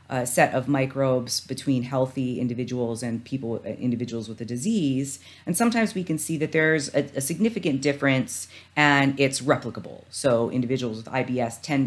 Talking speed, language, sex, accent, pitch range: 160 wpm, English, female, American, 115-145 Hz